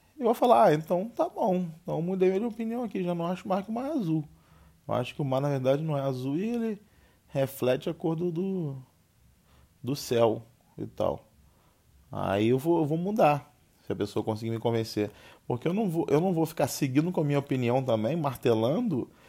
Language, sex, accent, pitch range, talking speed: Portuguese, male, Brazilian, 120-175 Hz, 215 wpm